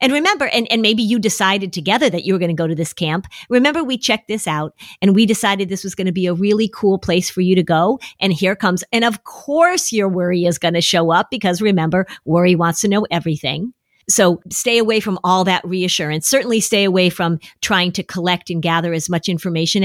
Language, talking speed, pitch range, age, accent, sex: English, 235 wpm, 175-220 Hz, 50-69, American, female